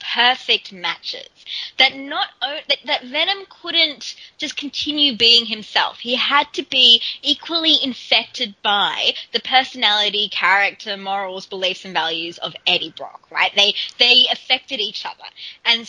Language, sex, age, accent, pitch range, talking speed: English, female, 20-39, Australian, 205-310 Hz, 135 wpm